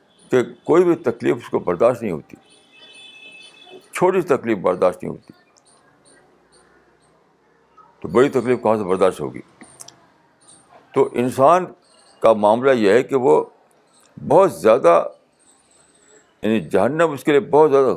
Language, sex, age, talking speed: Urdu, male, 60-79, 130 wpm